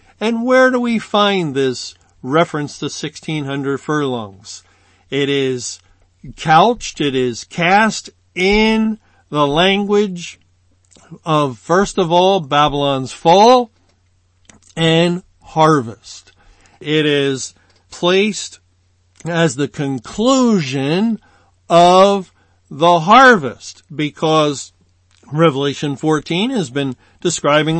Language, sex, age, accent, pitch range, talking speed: English, male, 50-69, American, 130-190 Hz, 90 wpm